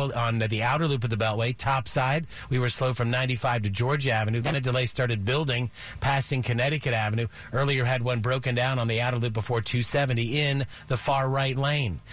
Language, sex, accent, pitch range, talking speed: English, male, American, 120-140 Hz, 200 wpm